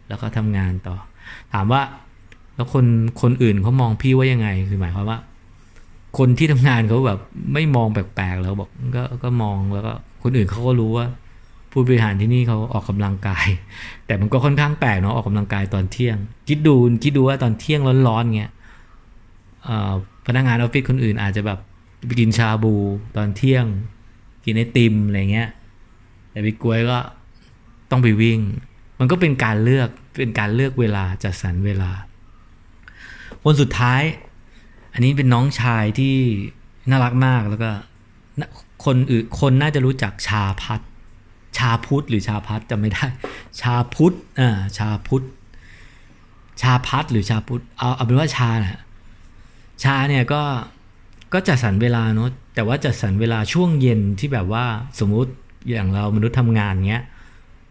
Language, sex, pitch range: English, male, 105-125 Hz